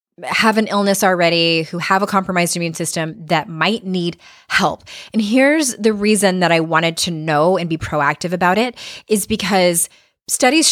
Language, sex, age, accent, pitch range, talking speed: English, female, 20-39, American, 170-205 Hz, 175 wpm